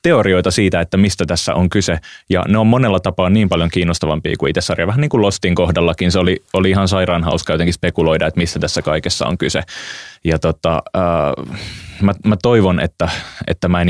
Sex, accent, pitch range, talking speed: male, native, 80-95 Hz, 200 wpm